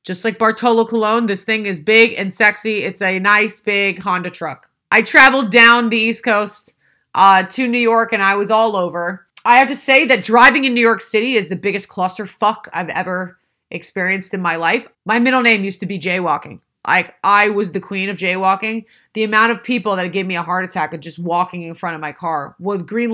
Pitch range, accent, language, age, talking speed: 190-230 Hz, American, English, 30-49, 220 wpm